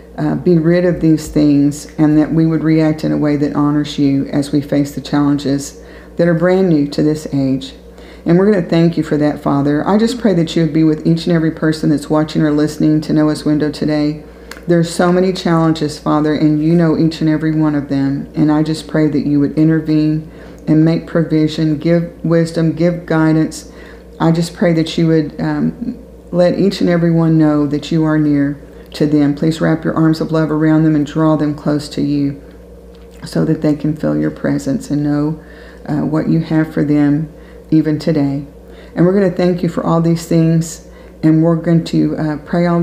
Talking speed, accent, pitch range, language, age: 215 wpm, American, 150-165 Hz, English, 40-59